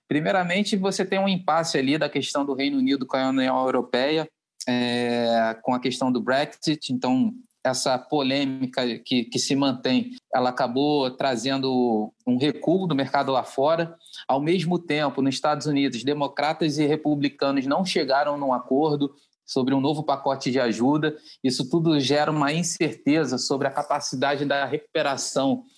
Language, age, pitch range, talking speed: Portuguese, 20-39, 130-155 Hz, 155 wpm